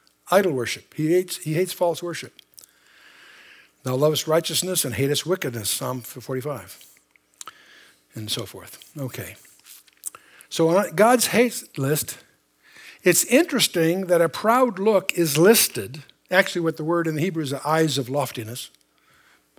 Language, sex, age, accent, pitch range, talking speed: English, male, 60-79, American, 135-195 Hz, 140 wpm